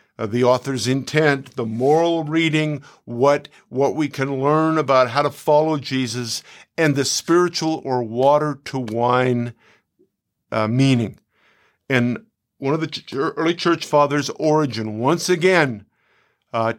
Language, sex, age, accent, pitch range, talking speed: English, male, 50-69, American, 130-180 Hz, 135 wpm